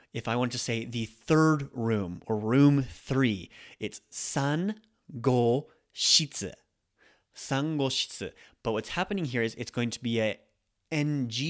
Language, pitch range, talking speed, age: English, 115-140 Hz, 135 wpm, 30-49